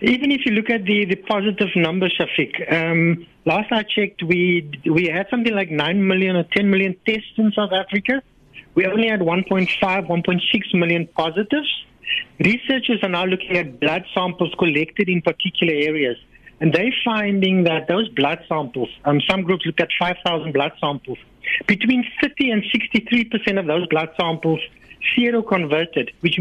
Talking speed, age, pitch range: 160 wpm, 60-79, 170-220 Hz